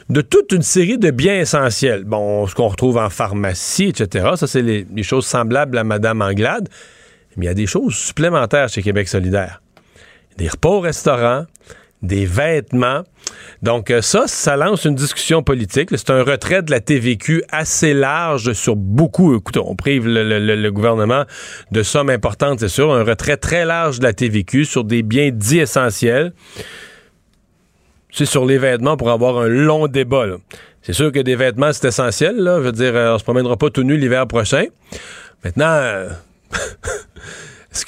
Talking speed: 175 wpm